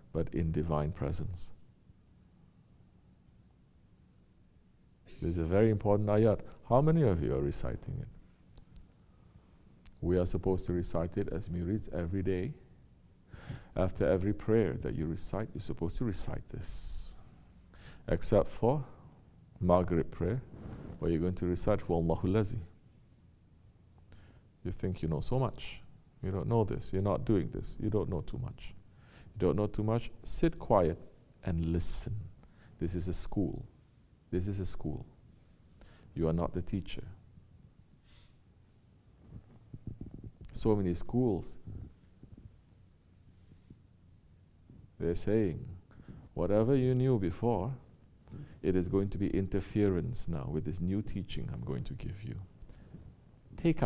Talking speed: 130 wpm